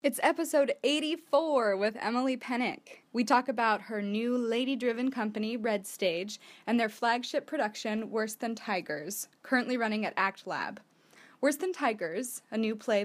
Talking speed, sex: 155 wpm, female